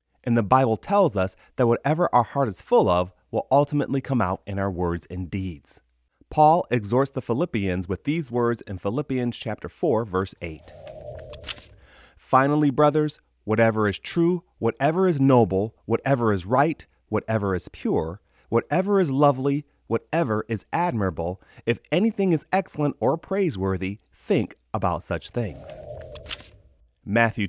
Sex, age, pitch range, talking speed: male, 30-49, 100-145 Hz, 140 wpm